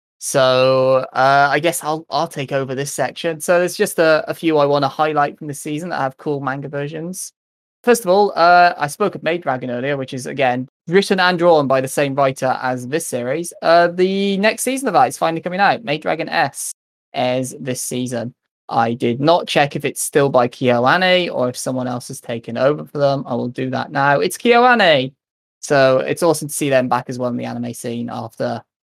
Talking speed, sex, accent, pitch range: 220 wpm, male, British, 125-165 Hz